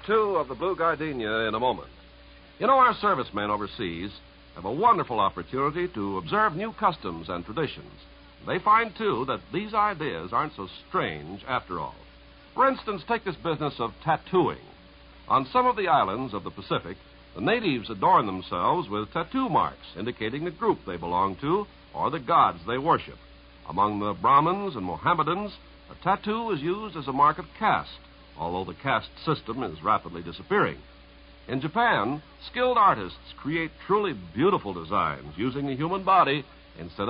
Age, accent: 60-79, American